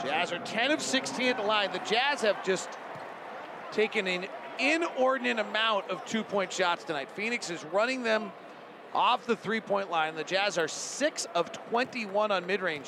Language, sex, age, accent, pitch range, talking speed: English, male, 40-59, American, 180-220 Hz, 170 wpm